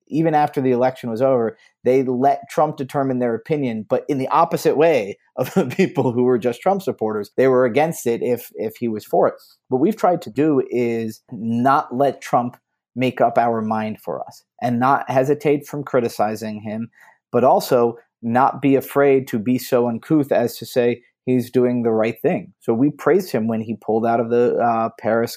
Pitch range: 115-135 Hz